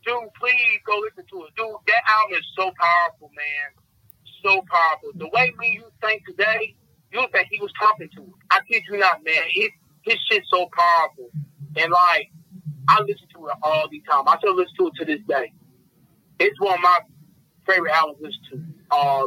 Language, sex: English, male